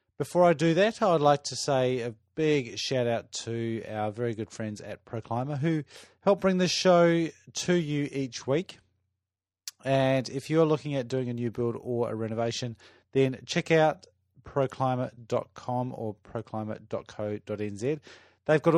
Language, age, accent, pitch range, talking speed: English, 30-49, Australian, 110-145 Hz, 155 wpm